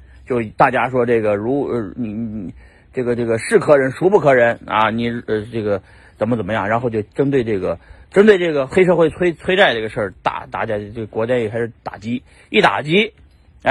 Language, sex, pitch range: Chinese, male, 105-135 Hz